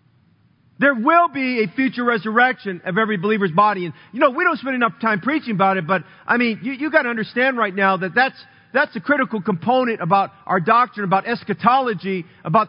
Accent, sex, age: American, male, 40-59